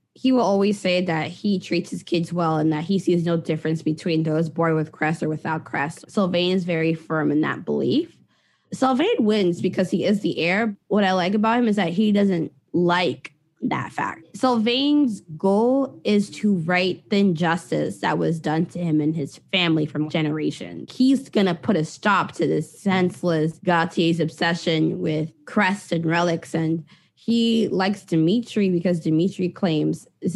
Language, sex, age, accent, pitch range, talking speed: English, female, 20-39, American, 160-200 Hz, 180 wpm